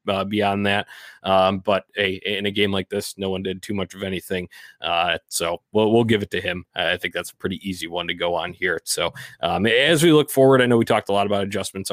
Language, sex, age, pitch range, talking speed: English, male, 20-39, 95-115 Hz, 255 wpm